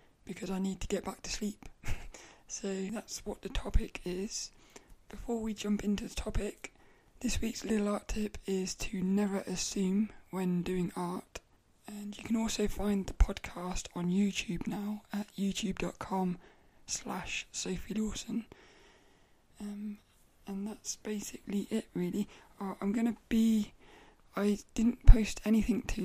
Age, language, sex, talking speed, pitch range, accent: 20-39, English, male, 140 wpm, 190-220 Hz, British